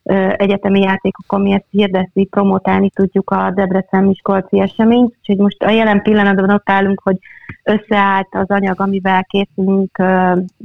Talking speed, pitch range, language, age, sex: 140 wpm, 185-205 Hz, Hungarian, 30-49, female